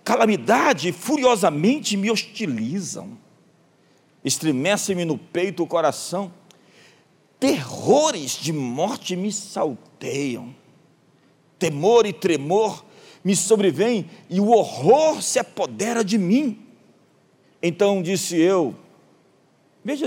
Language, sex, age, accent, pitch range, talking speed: Portuguese, male, 50-69, Brazilian, 150-225 Hz, 90 wpm